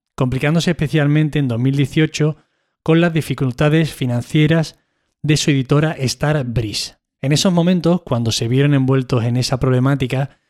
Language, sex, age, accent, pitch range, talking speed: Spanish, male, 20-39, Spanish, 130-155 Hz, 130 wpm